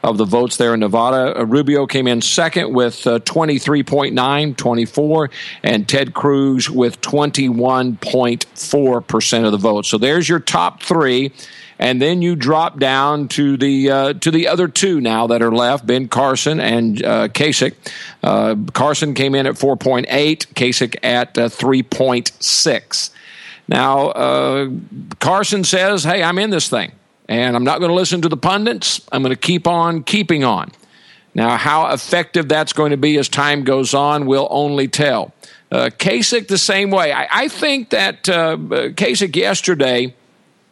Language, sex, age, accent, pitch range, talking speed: English, male, 50-69, American, 125-170 Hz, 160 wpm